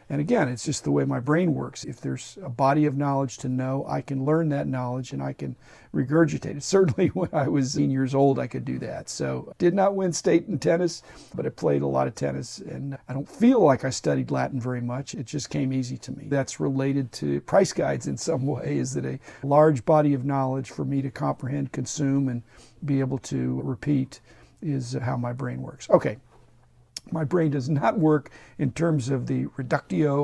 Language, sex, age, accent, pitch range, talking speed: English, male, 50-69, American, 130-155 Hz, 215 wpm